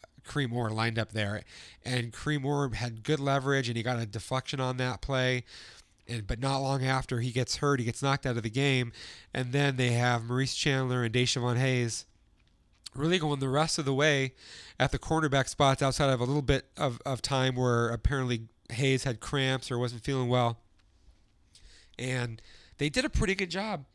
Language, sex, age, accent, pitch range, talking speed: English, male, 30-49, American, 120-140 Hz, 195 wpm